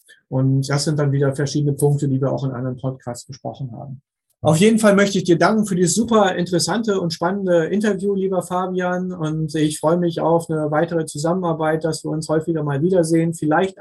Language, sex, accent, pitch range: German, male, German, 145-170 Hz